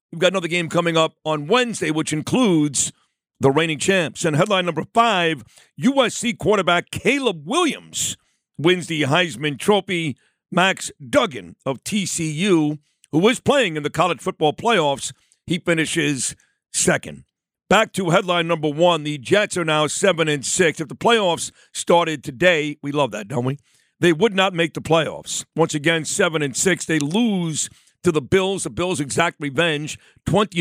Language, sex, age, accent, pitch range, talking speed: English, male, 50-69, American, 150-185 Hz, 165 wpm